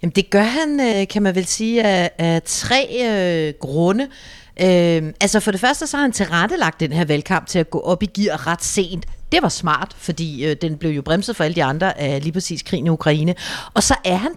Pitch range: 155-210 Hz